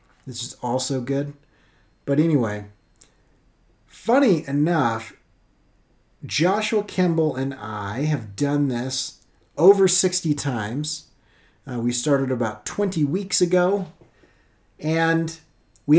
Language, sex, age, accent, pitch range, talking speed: English, male, 30-49, American, 125-165 Hz, 100 wpm